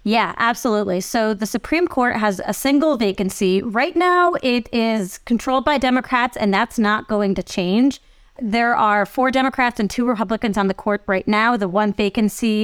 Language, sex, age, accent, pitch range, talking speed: English, female, 30-49, American, 200-245 Hz, 180 wpm